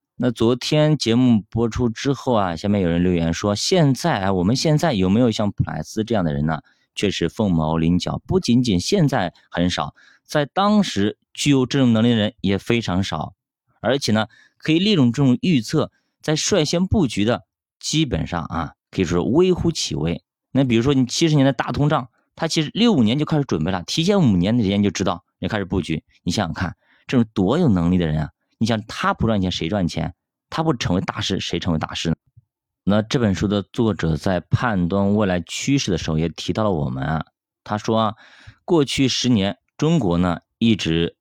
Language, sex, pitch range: Chinese, male, 85-125 Hz